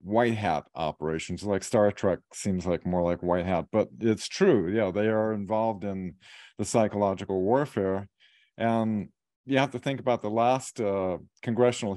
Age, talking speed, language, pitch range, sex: 50-69, 165 wpm, English, 90-115 Hz, male